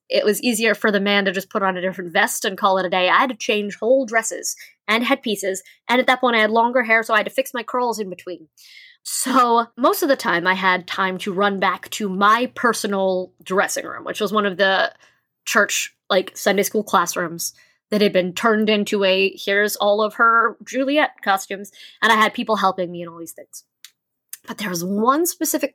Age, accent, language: 20-39, American, English